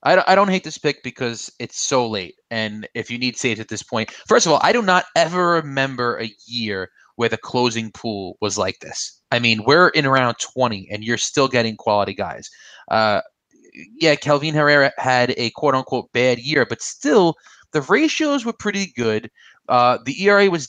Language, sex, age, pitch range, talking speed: English, male, 20-39, 120-180 Hz, 195 wpm